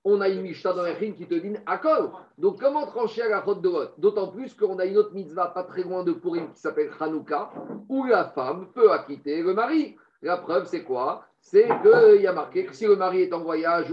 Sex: male